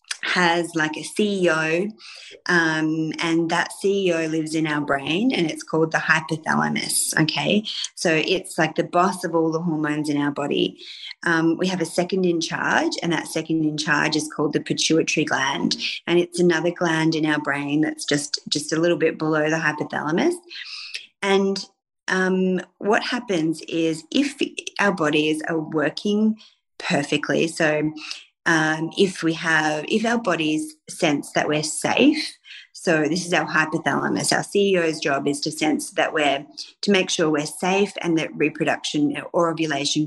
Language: English